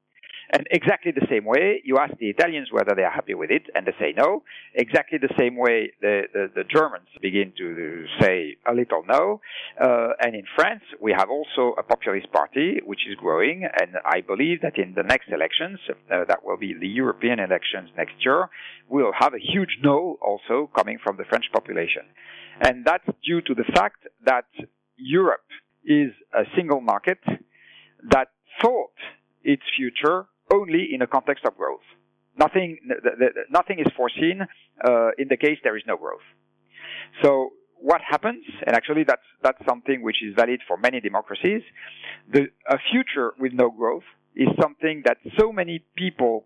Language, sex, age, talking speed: English, male, 50-69, 175 wpm